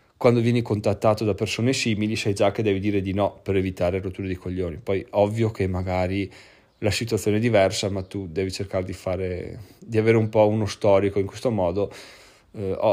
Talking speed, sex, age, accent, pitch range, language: 195 wpm, male, 30-49, native, 100-115 Hz, Italian